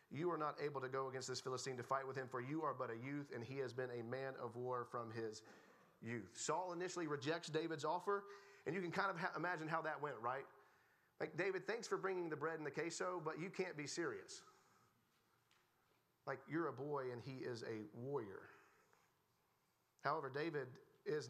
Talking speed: 205 wpm